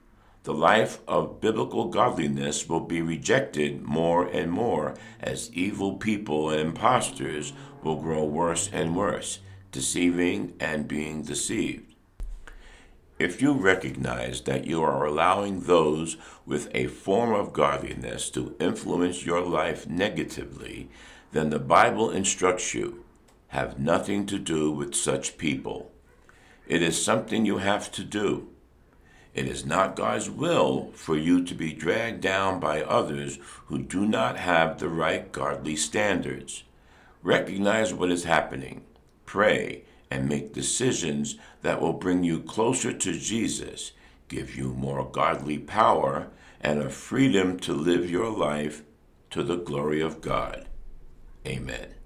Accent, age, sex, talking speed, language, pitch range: American, 60-79, male, 135 wpm, English, 70-90 Hz